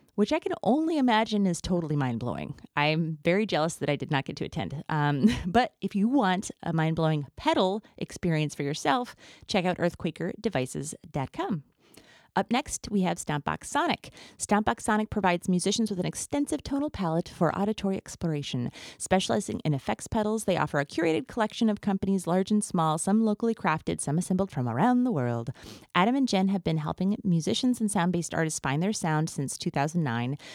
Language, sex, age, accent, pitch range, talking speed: English, female, 30-49, American, 150-205 Hz, 175 wpm